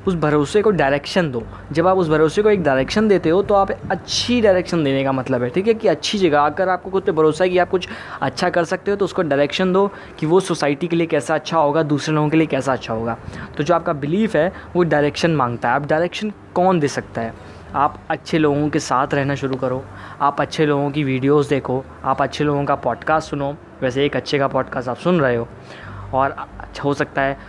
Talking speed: 235 wpm